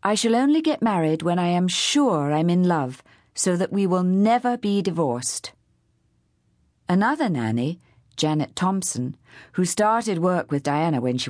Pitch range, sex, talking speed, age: 120-190 Hz, female, 160 wpm, 40-59